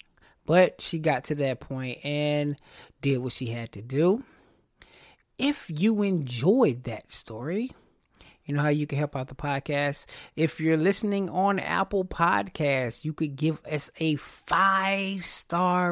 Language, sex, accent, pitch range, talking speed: English, male, American, 145-185 Hz, 145 wpm